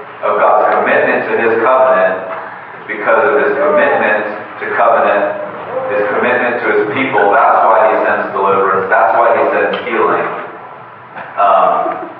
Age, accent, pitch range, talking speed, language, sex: 40-59, American, 90-105 Hz, 140 wpm, English, male